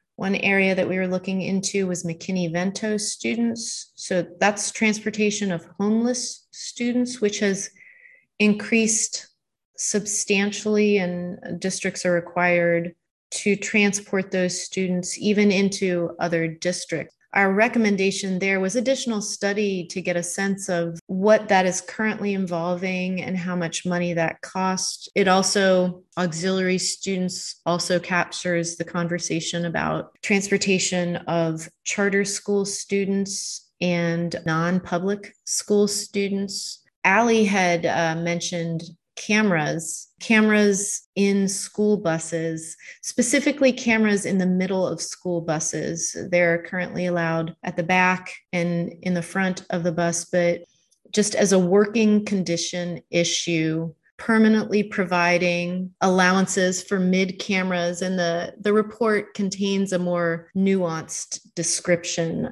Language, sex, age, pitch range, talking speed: English, female, 30-49, 175-205 Hz, 120 wpm